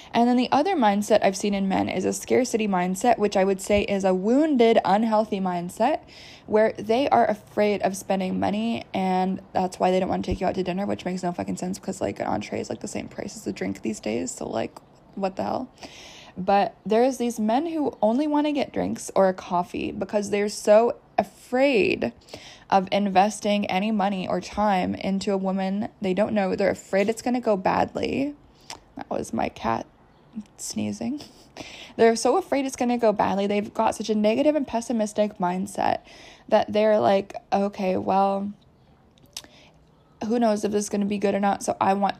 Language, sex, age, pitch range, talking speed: English, female, 20-39, 195-230 Hz, 200 wpm